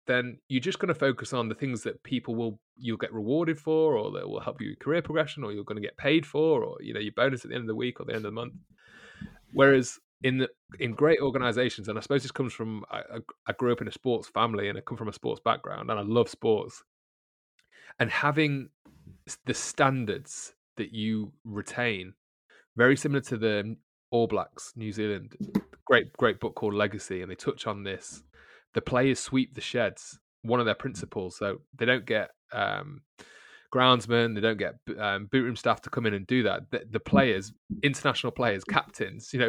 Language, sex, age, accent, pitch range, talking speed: English, male, 20-39, British, 110-135 Hz, 215 wpm